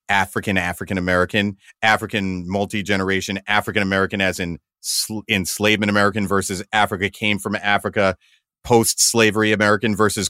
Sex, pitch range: male, 105-135 Hz